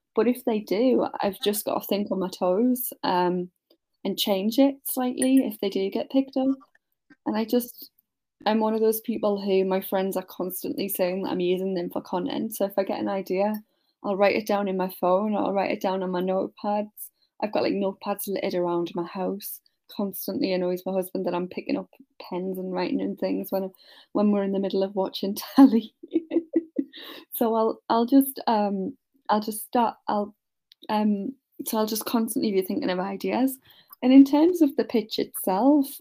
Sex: female